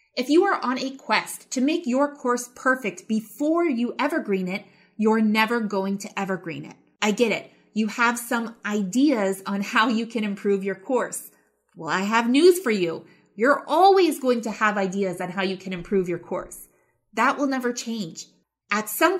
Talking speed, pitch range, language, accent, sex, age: 190 wpm, 200-265 Hz, English, American, female, 30-49